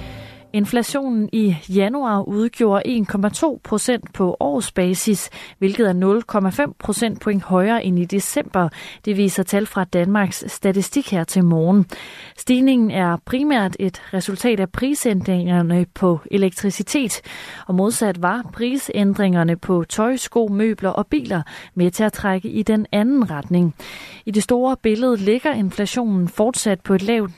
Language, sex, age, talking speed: Danish, female, 30-49, 140 wpm